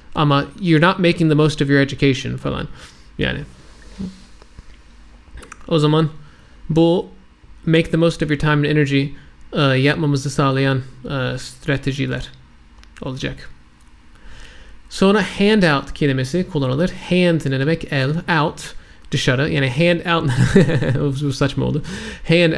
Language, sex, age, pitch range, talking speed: Turkish, male, 30-49, 130-165 Hz, 125 wpm